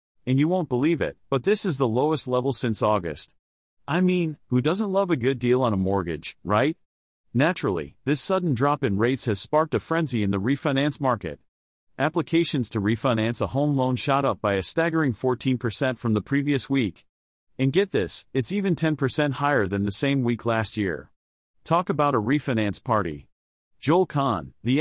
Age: 40-59